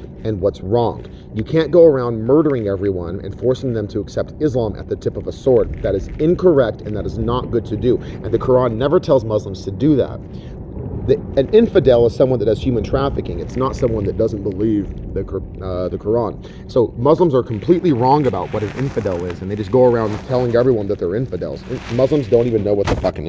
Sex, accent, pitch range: male, American, 100-150 Hz